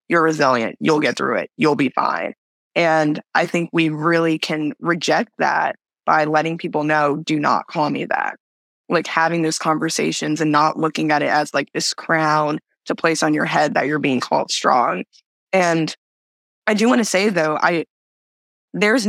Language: English